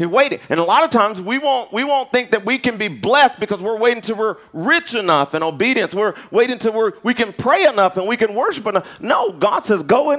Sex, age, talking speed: male, 40-59, 255 wpm